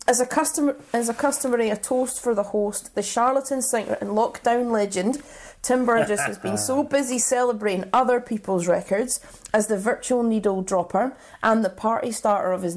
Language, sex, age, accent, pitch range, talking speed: English, female, 30-49, British, 190-245 Hz, 170 wpm